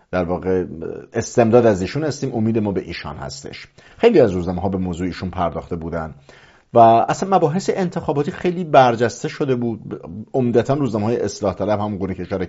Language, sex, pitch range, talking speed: English, male, 95-125 Hz, 175 wpm